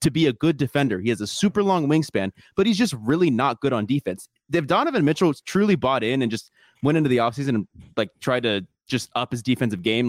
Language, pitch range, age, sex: English, 115-150 Hz, 20-39, male